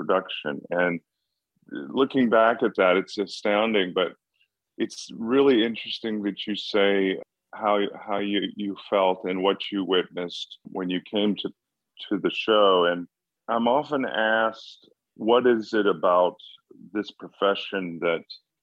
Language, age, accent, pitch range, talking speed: English, 40-59, American, 95-115 Hz, 135 wpm